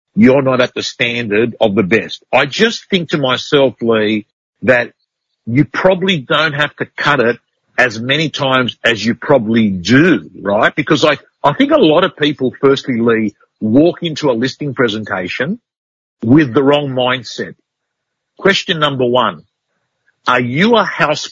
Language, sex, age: English, male, 50-69